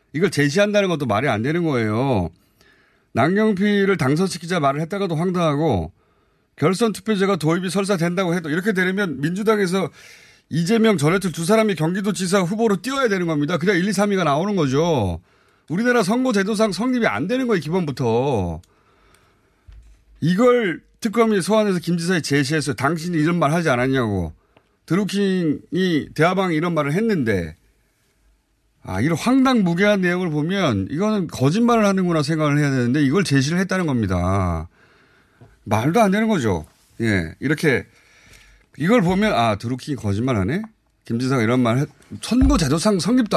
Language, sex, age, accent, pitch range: Korean, male, 30-49, native, 120-195 Hz